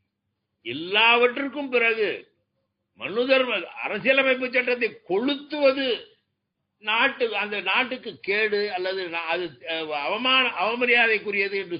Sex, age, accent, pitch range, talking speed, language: male, 50-69, native, 175-245 Hz, 75 wpm, Tamil